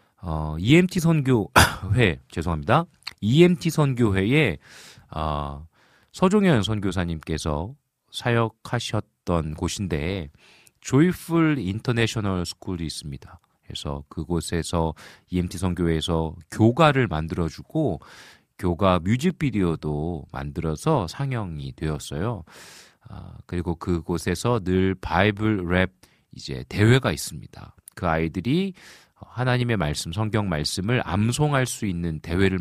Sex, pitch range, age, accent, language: male, 80-125 Hz, 40-59, native, Korean